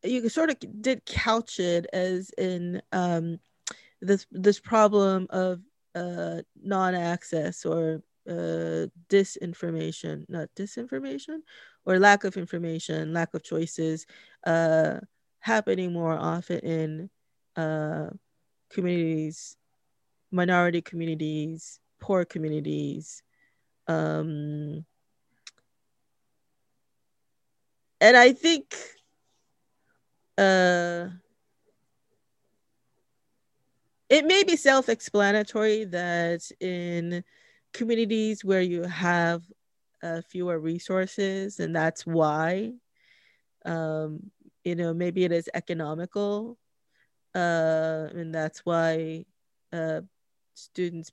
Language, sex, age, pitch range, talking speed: English, female, 20-39, 160-195 Hz, 85 wpm